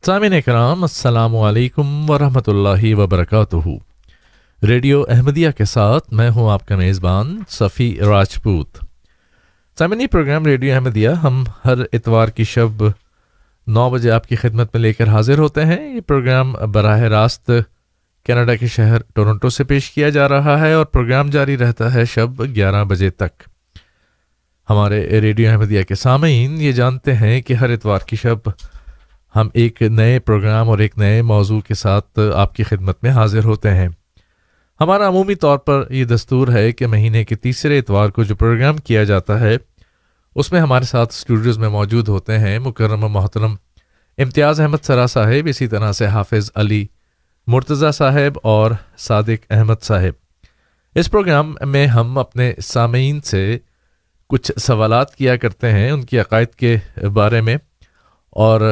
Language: Urdu